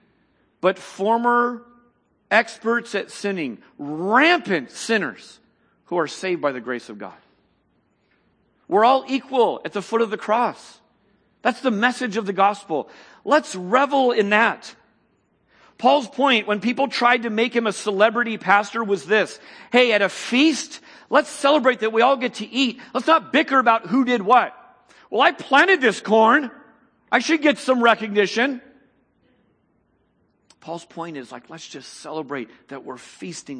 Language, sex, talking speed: English, male, 155 wpm